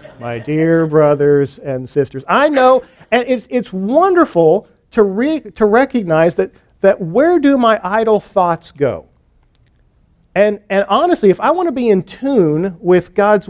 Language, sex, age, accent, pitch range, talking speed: English, male, 40-59, American, 165-220 Hz, 155 wpm